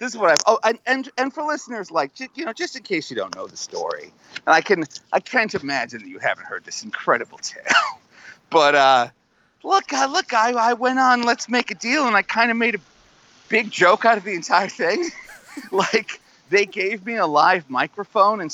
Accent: American